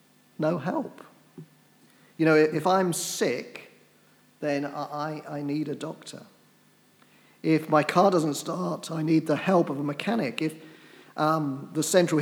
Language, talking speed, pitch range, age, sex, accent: English, 145 wpm, 145-165 Hz, 40-59, male, British